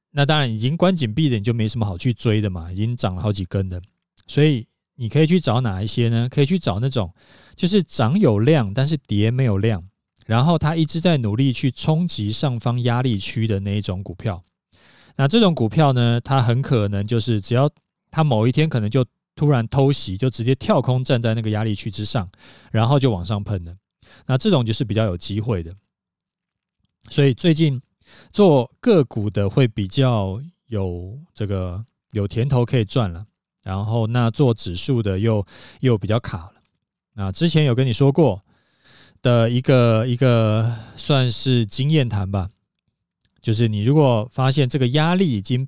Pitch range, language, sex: 105-140 Hz, Chinese, male